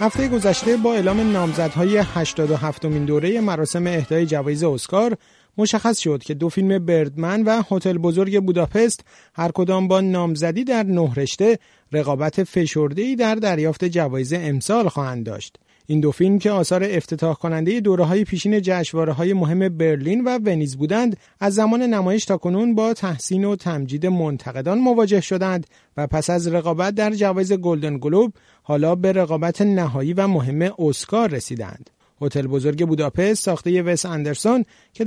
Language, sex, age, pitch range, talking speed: Persian, male, 30-49, 155-200 Hz, 145 wpm